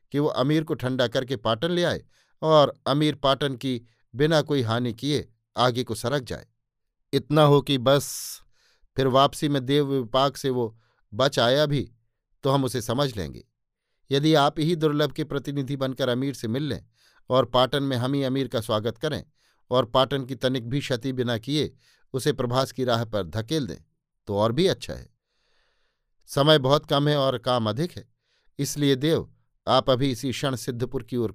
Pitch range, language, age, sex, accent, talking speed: 120-145 Hz, Hindi, 50-69, male, native, 185 wpm